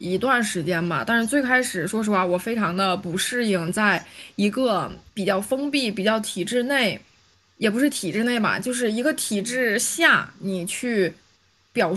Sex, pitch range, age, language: female, 185-245 Hz, 20-39, Chinese